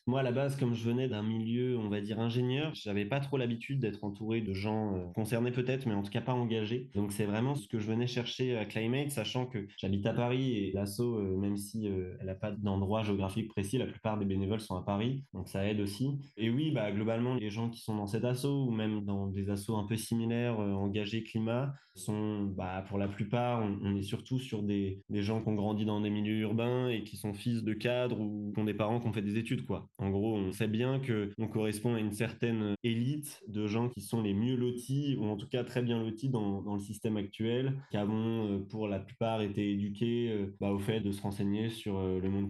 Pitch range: 105-120 Hz